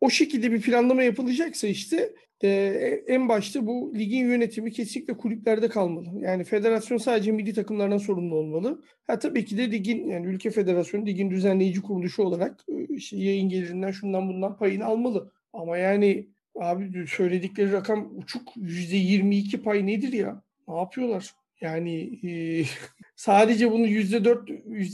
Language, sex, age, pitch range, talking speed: Turkish, male, 40-59, 190-240 Hz, 135 wpm